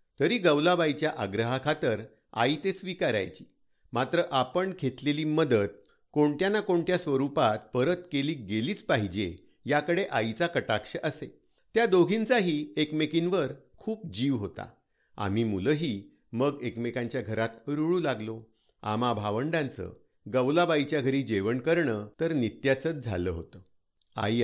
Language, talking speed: Marathi, 115 wpm